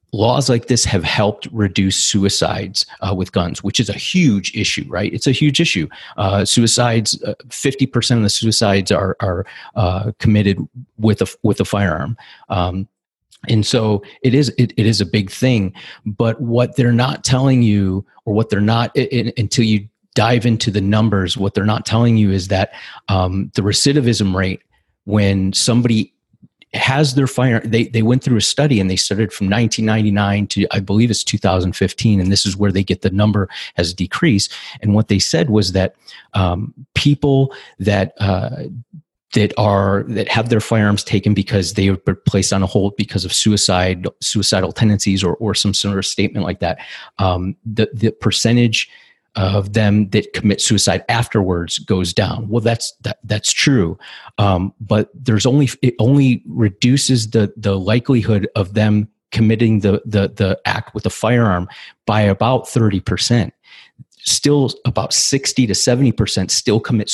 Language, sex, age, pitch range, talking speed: English, male, 30-49, 100-120 Hz, 175 wpm